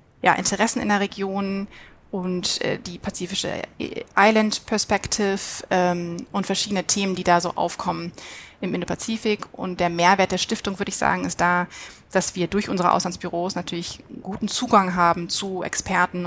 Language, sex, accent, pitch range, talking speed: German, female, German, 180-205 Hz, 155 wpm